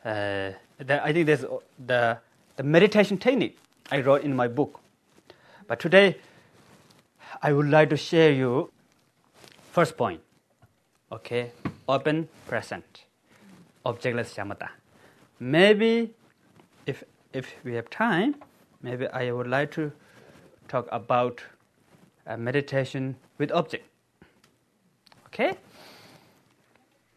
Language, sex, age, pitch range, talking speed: English, male, 30-49, 110-145 Hz, 105 wpm